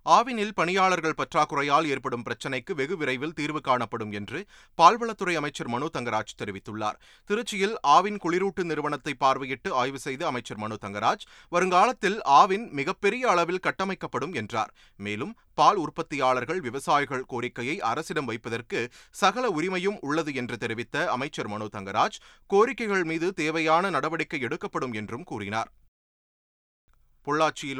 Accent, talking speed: native, 110 wpm